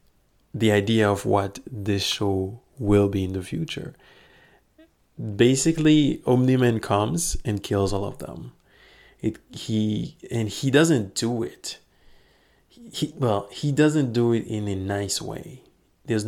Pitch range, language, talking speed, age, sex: 100-120 Hz, English, 140 wpm, 30-49, male